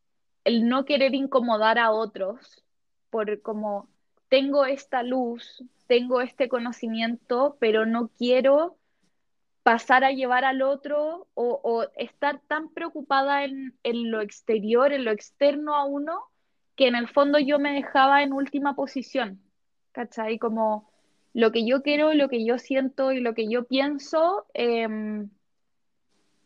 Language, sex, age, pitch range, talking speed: Spanish, female, 10-29, 220-270 Hz, 140 wpm